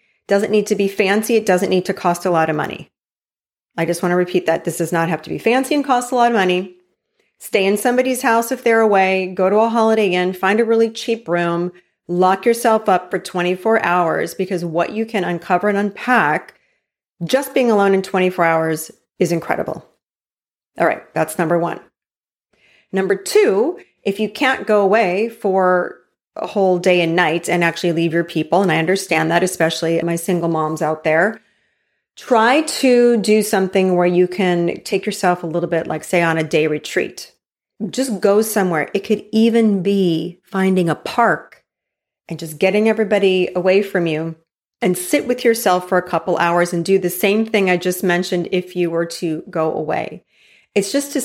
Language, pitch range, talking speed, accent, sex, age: English, 175-215 Hz, 190 wpm, American, female, 30-49